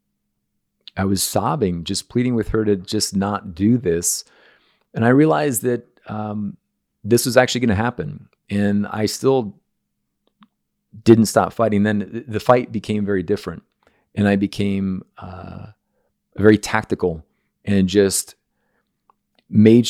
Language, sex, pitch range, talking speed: English, male, 95-115 Hz, 135 wpm